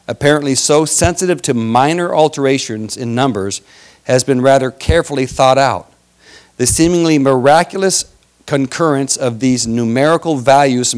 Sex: male